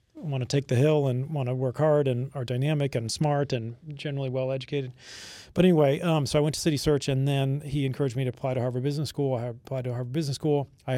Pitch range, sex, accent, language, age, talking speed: 125-145 Hz, male, American, English, 40-59, 245 wpm